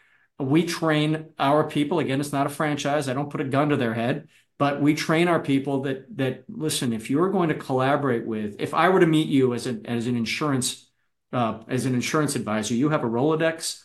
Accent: American